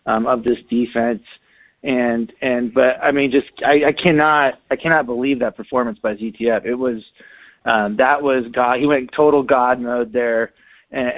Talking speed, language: 175 wpm, English